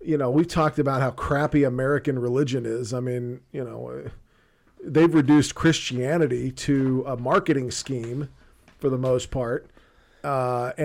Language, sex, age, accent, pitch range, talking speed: English, male, 40-59, American, 125-165 Hz, 145 wpm